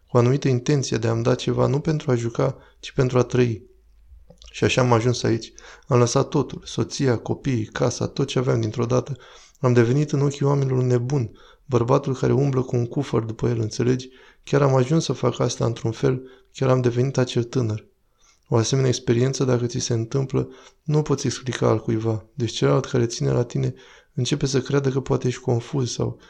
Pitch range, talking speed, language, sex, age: 120-135 Hz, 190 wpm, Romanian, male, 20-39